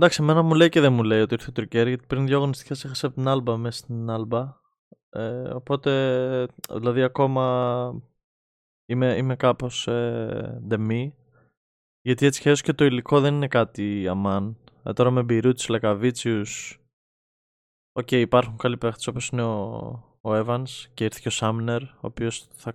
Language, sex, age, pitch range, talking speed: Greek, male, 20-39, 110-130 Hz, 165 wpm